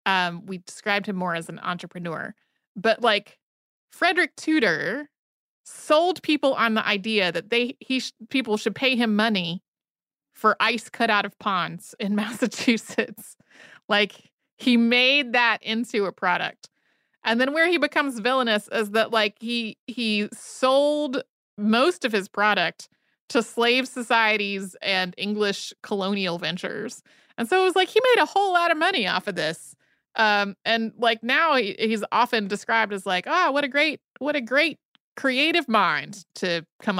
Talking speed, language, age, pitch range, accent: 160 wpm, English, 30-49, 200-260 Hz, American